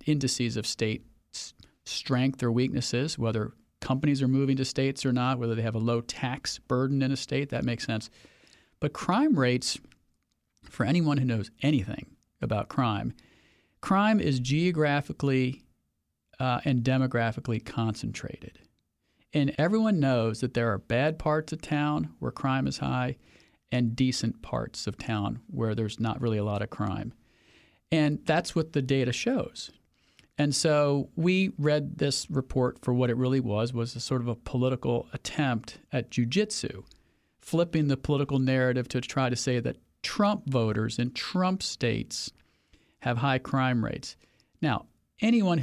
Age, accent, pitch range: 40-59, American, 115-145 Hz